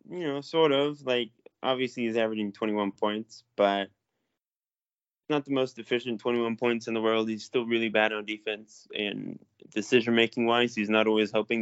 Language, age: English, 20-39